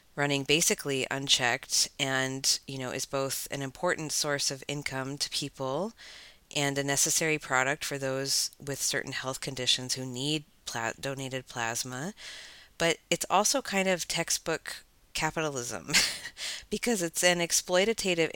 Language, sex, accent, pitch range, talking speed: English, female, American, 130-155 Hz, 130 wpm